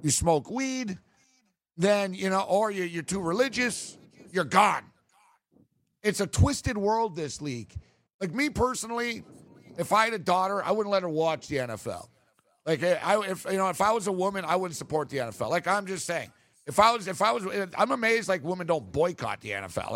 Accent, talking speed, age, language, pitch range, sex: American, 200 wpm, 50-69, English, 150-195 Hz, male